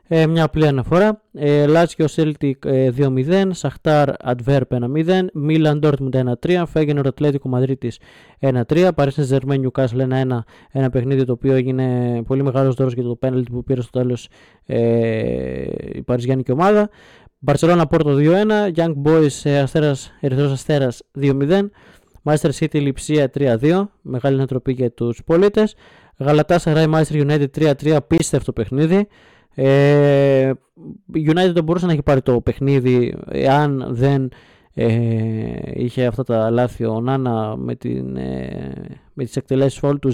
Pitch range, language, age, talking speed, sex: 130-155 Hz, Greek, 20-39, 140 wpm, male